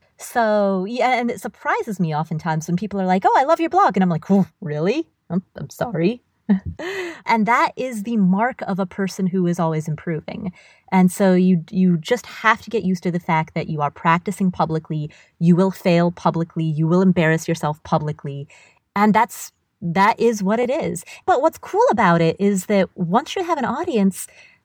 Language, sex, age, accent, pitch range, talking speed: English, female, 30-49, American, 175-230 Hz, 195 wpm